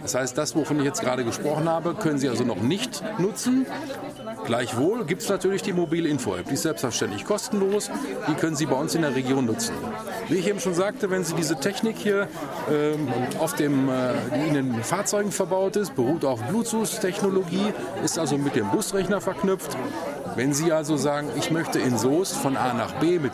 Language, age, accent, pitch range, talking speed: German, 40-59, German, 145-195 Hz, 195 wpm